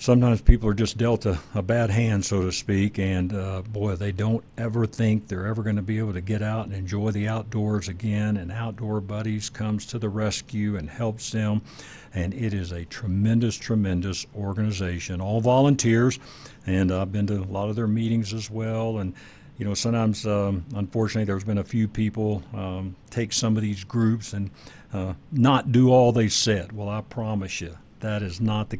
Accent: American